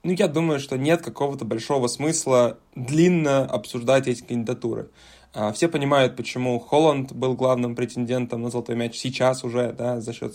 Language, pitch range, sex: Russian, 120-140 Hz, male